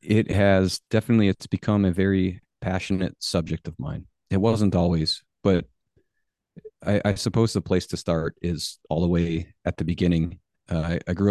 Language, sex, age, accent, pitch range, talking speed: English, male, 30-49, American, 85-100 Hz, 170 wpm